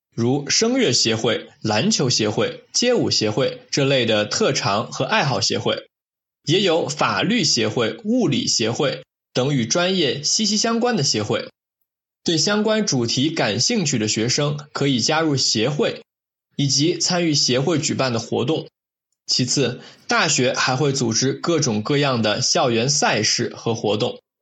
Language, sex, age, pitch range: German, male, 20-39, 120-175 Hz